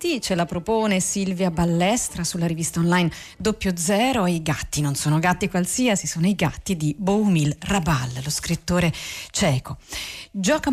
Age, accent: 40-59, native